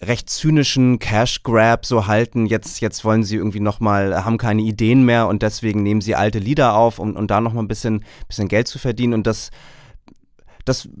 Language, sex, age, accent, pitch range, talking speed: German, male, 30-49, German, 110-130 Hz, 195 wpm